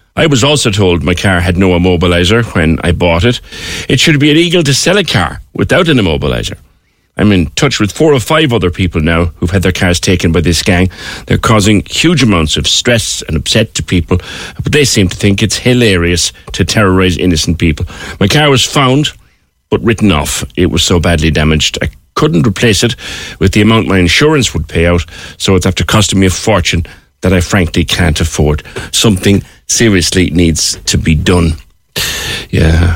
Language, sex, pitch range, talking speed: English, male, 85-115 Hz, 195 wpm